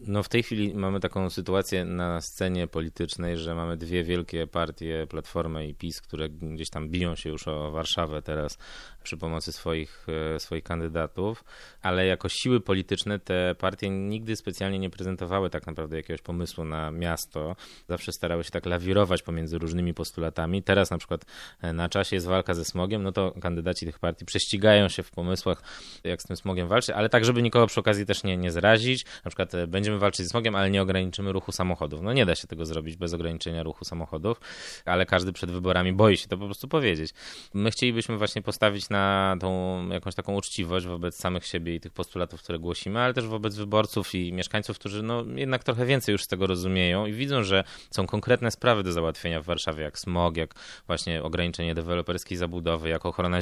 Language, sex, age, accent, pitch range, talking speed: Polish, male, 20-39, native, 85-100 Hz, 190 wpm